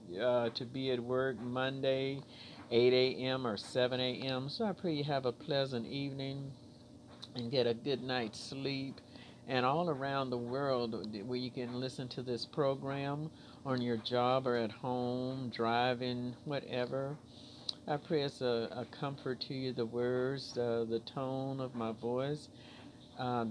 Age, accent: 50-69, American